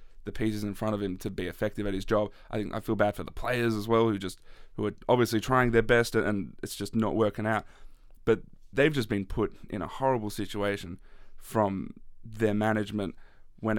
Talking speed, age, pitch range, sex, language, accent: 215 wpm, 20-39, 100-115 Hz, male, English, Australian